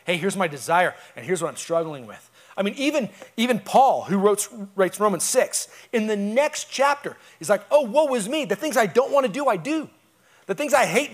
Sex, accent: male, American